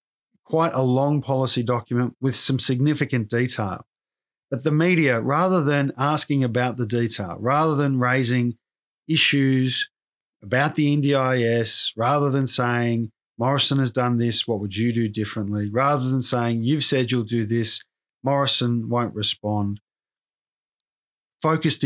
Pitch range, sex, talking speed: 115-140 Hz, male, 135 wpm